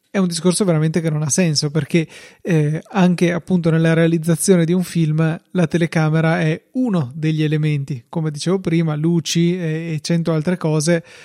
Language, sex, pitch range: Italian, male, 155-175 Hz